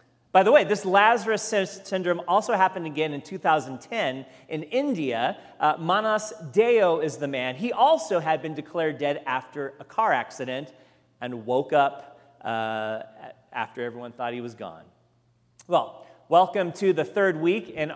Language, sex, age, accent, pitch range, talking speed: English, male, 40-59, American, 140-195 Hz, 155 wpm